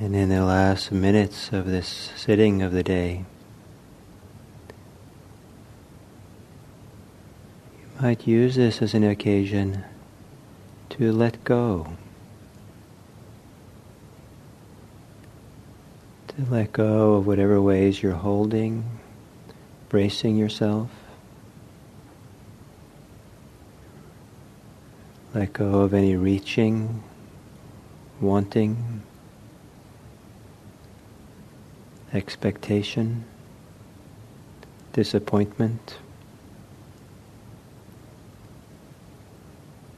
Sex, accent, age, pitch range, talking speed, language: male, American, 40-59, 100-120 Hz, 60 wpm, English